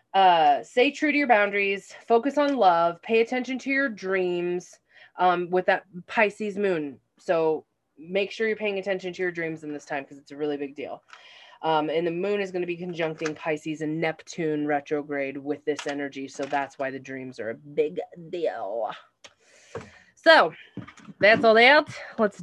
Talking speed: 180 wpm